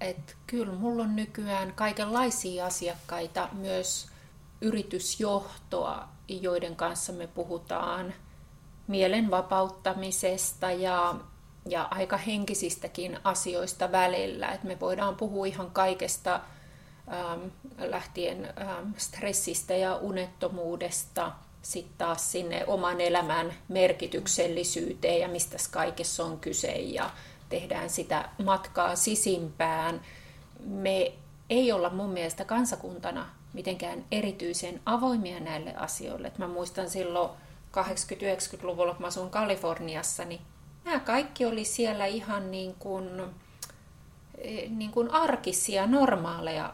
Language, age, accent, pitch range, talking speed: Finnish, 30-49, native, 175-205 Hz, 100 wpm